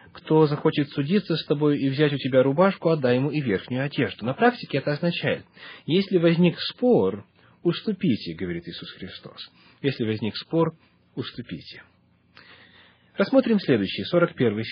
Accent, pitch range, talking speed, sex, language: native, 130-170 Hz, 135 wpm, male, Russian